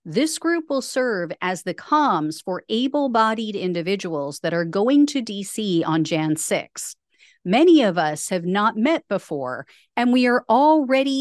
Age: 40-59